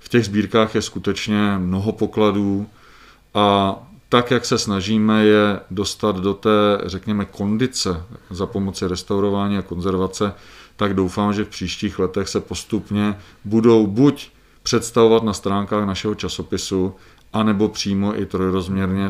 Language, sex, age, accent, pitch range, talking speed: Czech, male, 40-59, native, 95-110 Hz, 130 wpm